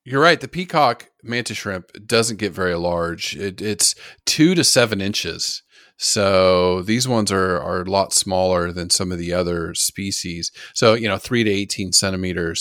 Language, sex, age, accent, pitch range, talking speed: English, male, 40-59, American, 90-115 Hz, 175 wpm